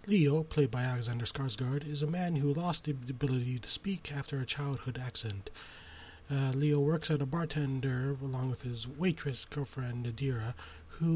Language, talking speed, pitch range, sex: English, 165 wpm, 125-150 Hz, male